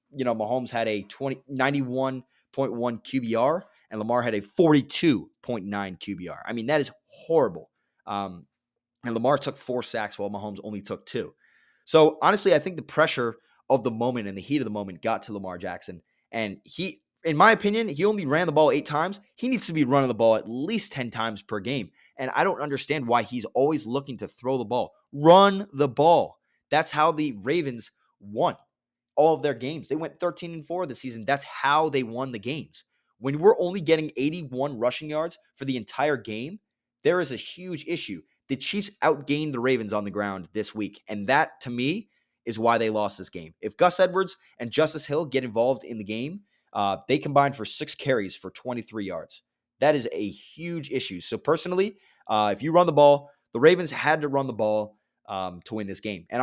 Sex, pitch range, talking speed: male, 110-155 Hz, 205 wpm